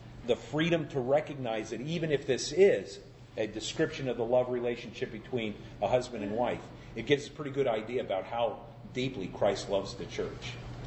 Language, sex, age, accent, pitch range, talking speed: Italian, male, 40-59, American, 120-160 Hz, 180 wpm